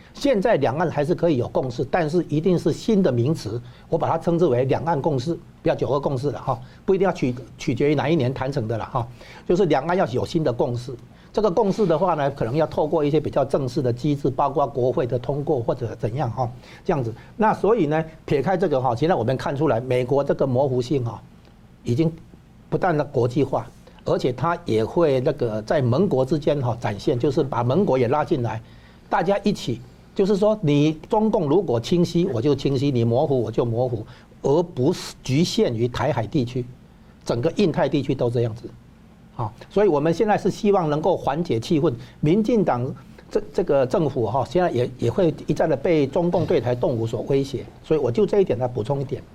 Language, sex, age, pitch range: Chinese, male, 60-79, 125-175 Hz